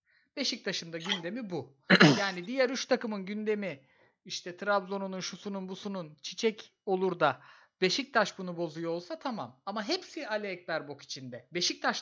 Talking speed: 140 wpm